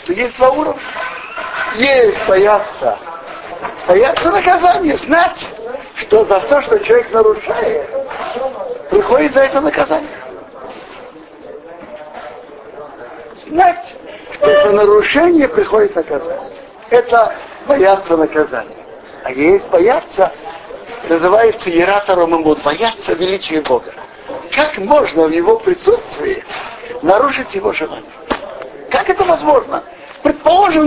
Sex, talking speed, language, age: male, 95 wpm, Russian, 50-69